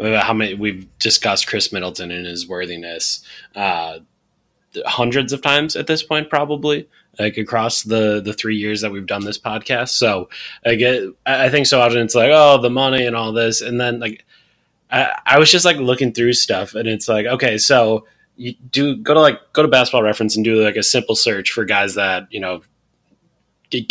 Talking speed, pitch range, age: 200 wpm, 105-125 Hz, 20-39